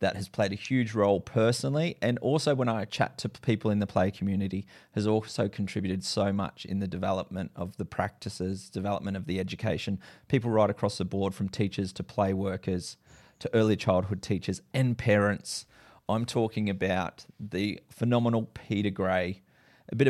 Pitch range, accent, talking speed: 100-120 Hz, Australian, 175 wpm